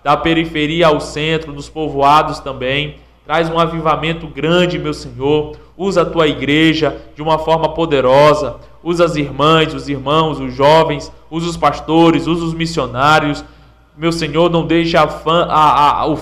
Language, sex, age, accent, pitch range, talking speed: Portuguese, male, 20-39, Brazilian, 150-165 Hz, 155 wpm